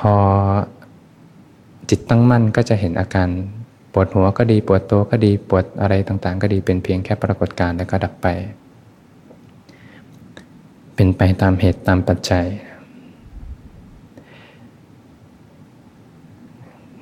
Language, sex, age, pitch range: Thai, male, 20-39, 90-105 Hz